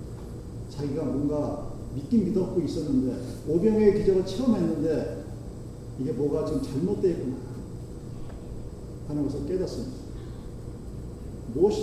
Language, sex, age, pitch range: Korean, male, 40-59, 135-200 Hz